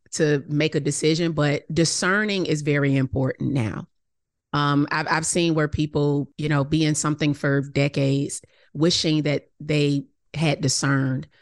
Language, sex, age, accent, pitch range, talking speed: English, female, 30-49, American, 140-165 Hz, 145 wpm